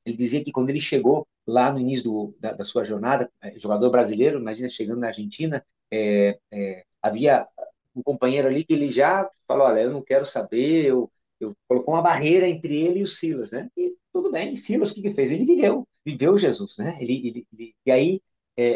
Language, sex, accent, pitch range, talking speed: Portuguese, male, Brazilian, 120-155 Hz, 210 wpm